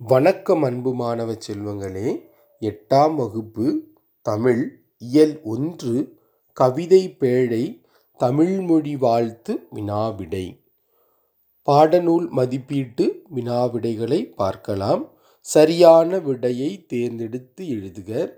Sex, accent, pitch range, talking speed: male, native, 120-165 Hz, 75 wpm